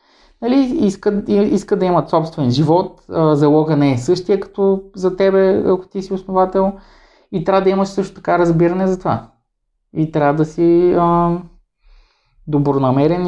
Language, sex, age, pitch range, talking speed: Bulgarian, male, 20-39, 125-170 Hz, 150 wpm